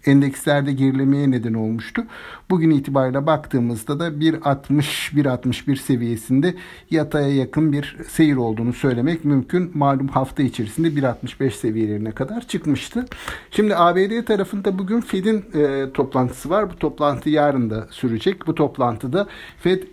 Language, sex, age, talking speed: Turkish, male, 60-79, 115 wpm